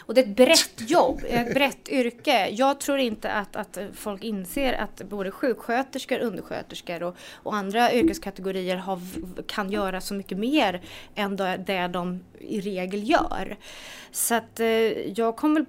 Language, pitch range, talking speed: English, 195-260 Hz, 150 wpm